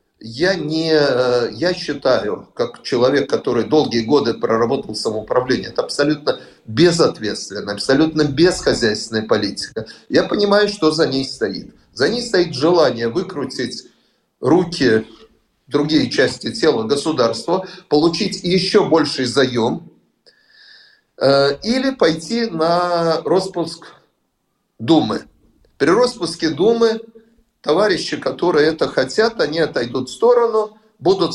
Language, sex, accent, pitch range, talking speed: Russian, male, native, 135-200 Hz, 100 wpm